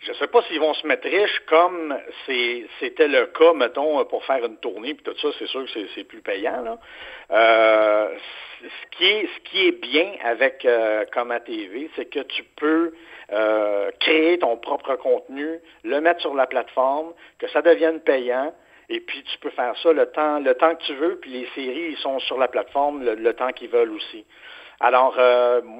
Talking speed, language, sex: 205 wpm, French, male